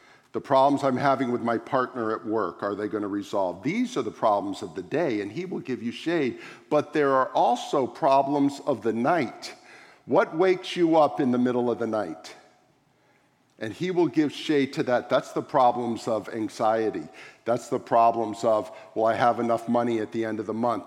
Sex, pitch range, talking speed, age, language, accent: male, 120-160 Hz, 205 wpm, 50-69, English, American